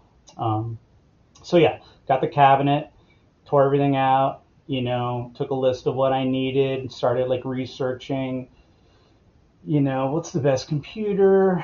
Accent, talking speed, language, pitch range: American, 145 wpm, English, 115-140 Hz